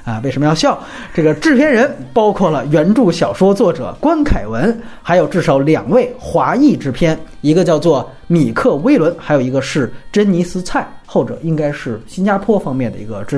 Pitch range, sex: 145-230 Hz, male